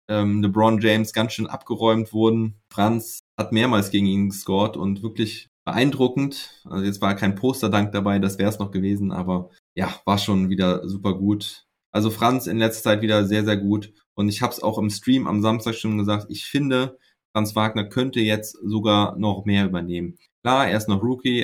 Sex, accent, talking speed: male, German, 195 wpm